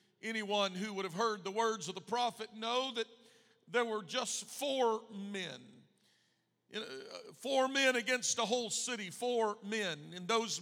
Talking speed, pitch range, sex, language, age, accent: 155 wpm, 185-225 Hz, male, English, 50-69, American